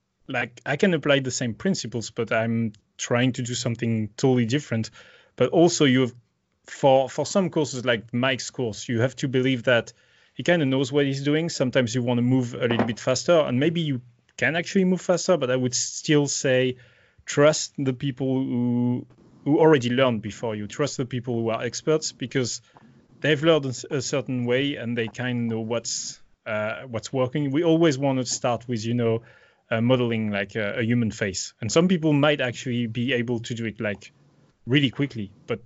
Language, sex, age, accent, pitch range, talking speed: English, male, 30-49, French, 120-140 Hz, 200 wpm